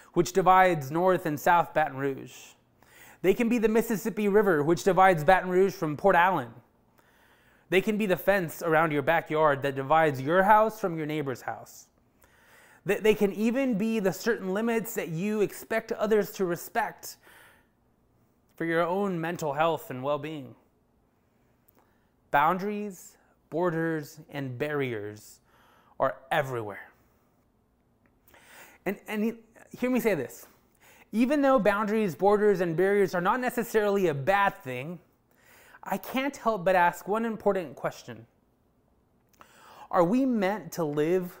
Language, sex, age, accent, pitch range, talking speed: English, male, 20-39, American, 155-205 Hz, 135 wpm